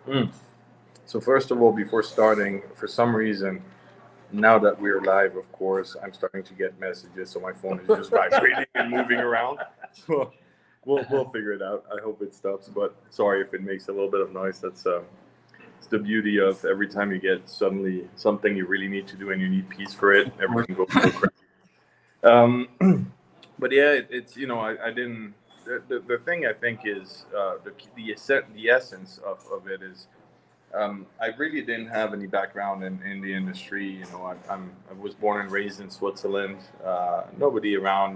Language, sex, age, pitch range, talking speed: English, male, 20-39, 95-115 Hz, 205 wpm